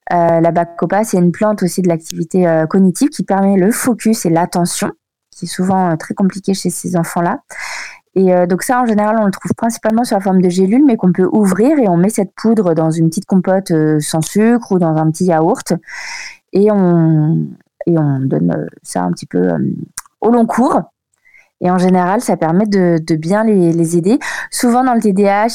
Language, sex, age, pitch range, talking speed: French, female, 20-39, 175-220 Hz, 215 wpm